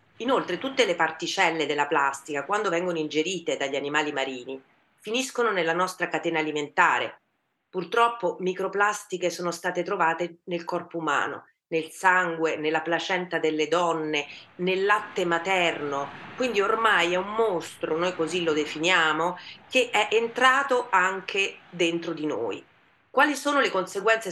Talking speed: 135 wpm